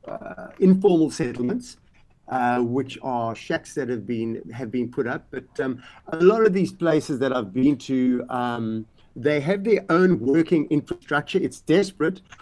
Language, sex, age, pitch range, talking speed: English, male, 50-69, 115-155 Hz, 165 wpm